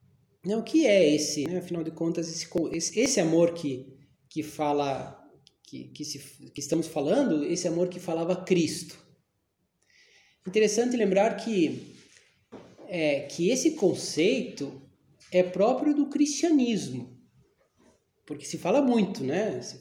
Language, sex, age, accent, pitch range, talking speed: Portuguese, male, 20-39, Brazilian, 145-205 Hz, 130 wpm